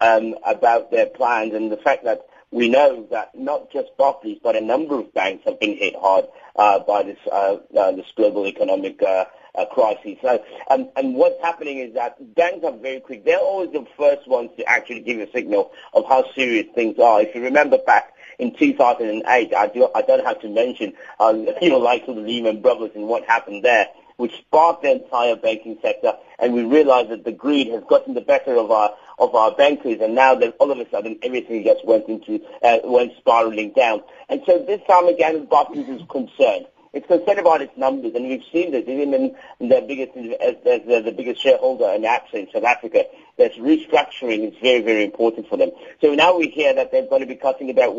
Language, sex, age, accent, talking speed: English, male, 50-69, British, 215 wpm